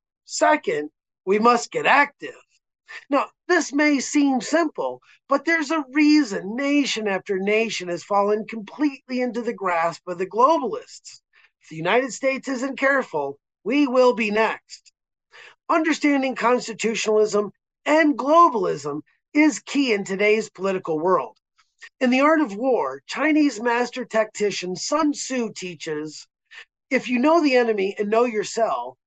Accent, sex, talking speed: American, male, 135 wpm